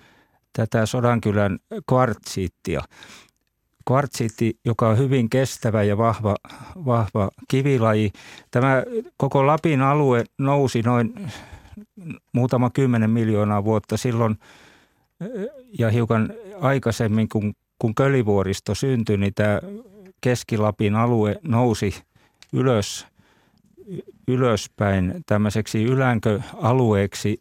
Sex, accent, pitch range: male, native, 105-130 Hz